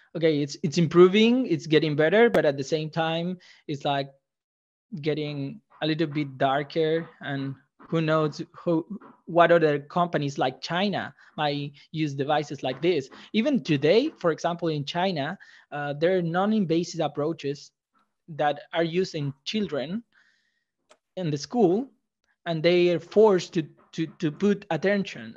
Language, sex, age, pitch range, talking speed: English, male, 20-39, 150-180 Hz, 140 wpm